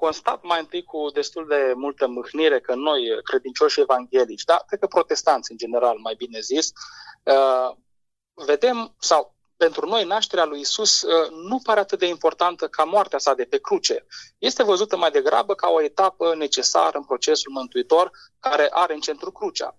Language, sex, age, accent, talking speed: Romanian, male, 20-39, native, 175 wpm